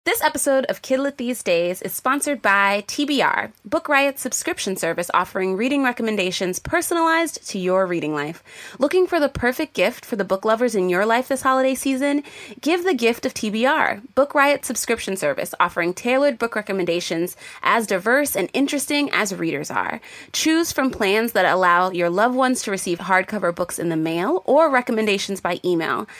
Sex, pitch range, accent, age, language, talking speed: female, 190-270 Hz, American, 20-39, English, 175 wpm